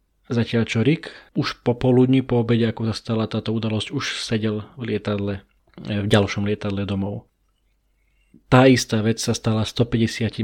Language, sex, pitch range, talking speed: Slovak, male, 105-120 Hz, 145 wpm